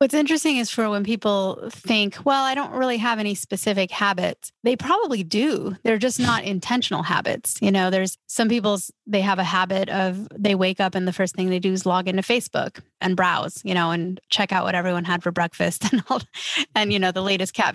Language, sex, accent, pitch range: English, female, American, 185-220 Hz